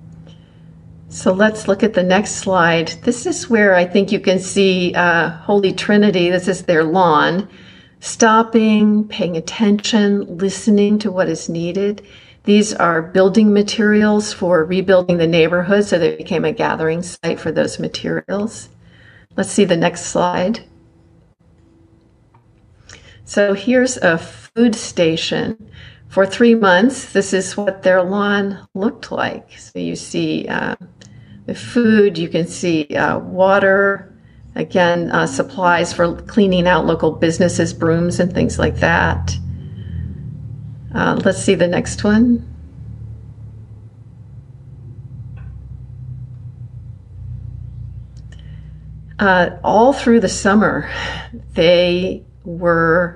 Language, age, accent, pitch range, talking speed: English, 50-69, American, 125-205 Hz, 115 wpm